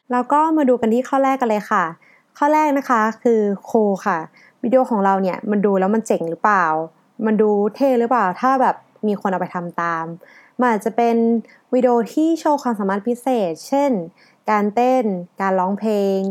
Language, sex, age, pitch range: Thai, female, 20-39, 195-255 Hz